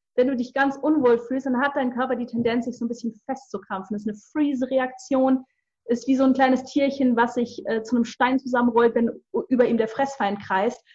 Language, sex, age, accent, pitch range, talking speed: German, female, 30-49, German, 230-275 Hz, 225 wpm